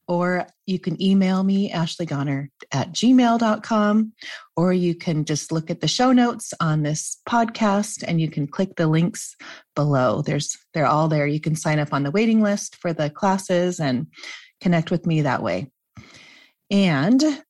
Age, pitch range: 30-49, 155-200 Hz